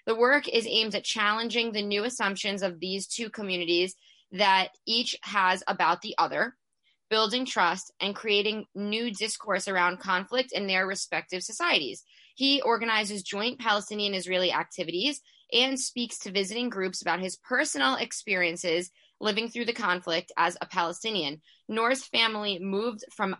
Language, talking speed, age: English, 145 wpm, 10-29